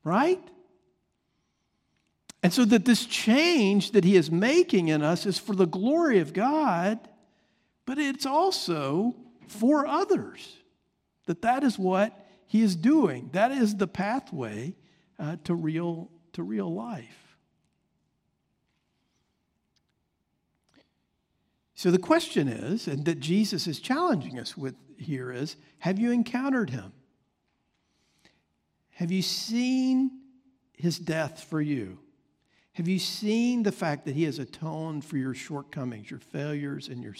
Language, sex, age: English, male, 50-69